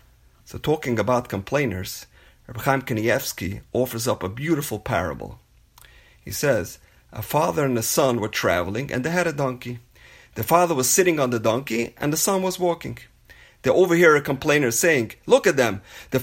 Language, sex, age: English, male, 30-49